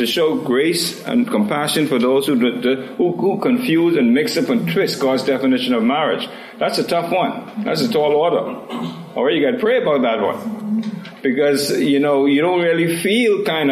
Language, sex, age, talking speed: English, male, 60-79, 190 wpm